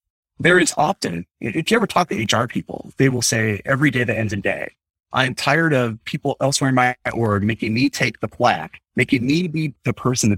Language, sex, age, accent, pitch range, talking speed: English, male, 30-49, American, 105-140 Hz, 220 wpm